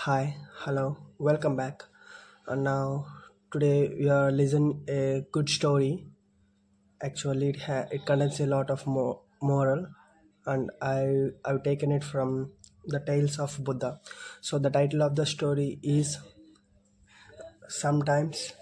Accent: Indian